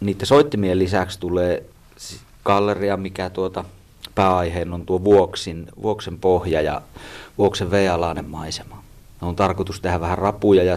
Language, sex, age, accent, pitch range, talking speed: Finnish, male, 30-49, native, 90-105 Hz, 130 wpm